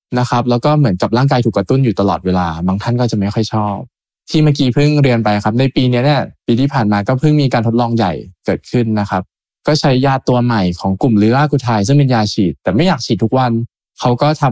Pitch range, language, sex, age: 105-135 Hz, Thai, male, 20-39